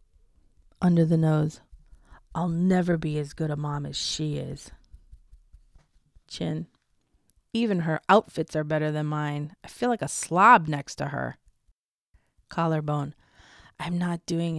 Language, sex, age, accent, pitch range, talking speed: English, female, 30-49, American, 150-190 Hz, 135 wpm